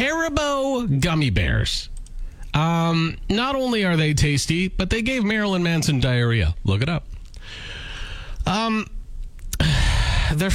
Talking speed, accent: 115 wpm, American